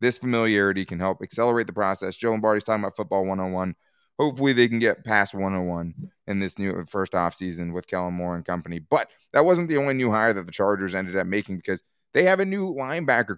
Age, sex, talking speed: 20-39, male, 215 wpm